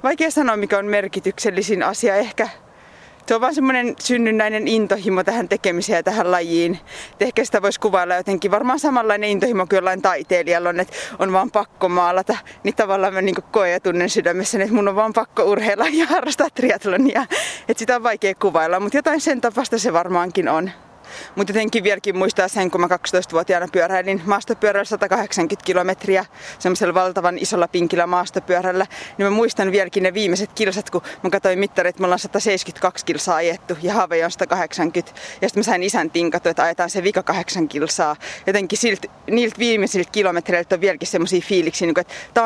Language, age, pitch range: Finnish, 20-39, 180-220 Hz